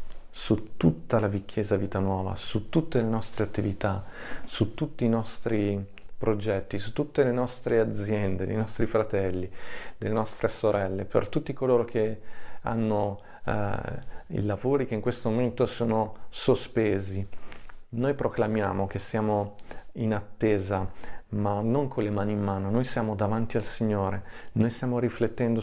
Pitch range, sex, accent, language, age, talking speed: 100-115 Hz, male, native, Italian, 40-59, 145 wpm